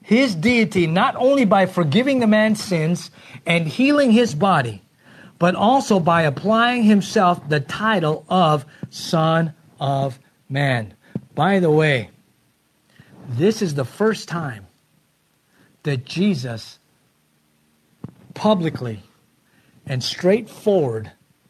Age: 50-69